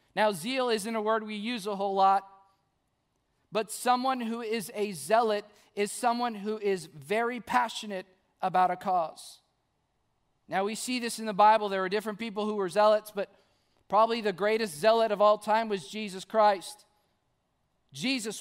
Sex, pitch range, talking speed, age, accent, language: male, 185-220 Hz, 165 wpm, 40-59, American, English